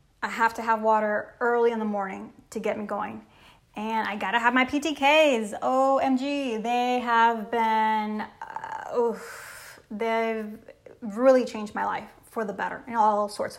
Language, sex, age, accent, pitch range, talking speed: English, female, 20-39, American, 215-255 Hz, 160 wpm